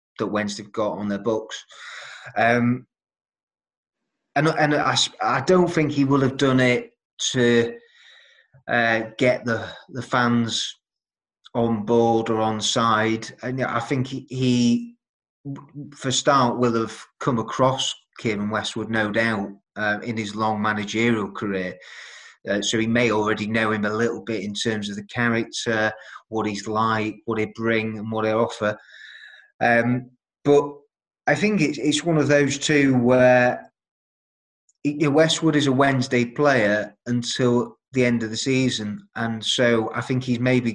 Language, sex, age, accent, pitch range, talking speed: English, male, 30-49, British, 110-130 Hz, 155 wpm